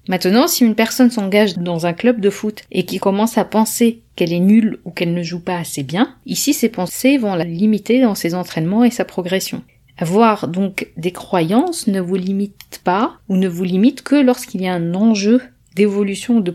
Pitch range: 185-235 Hz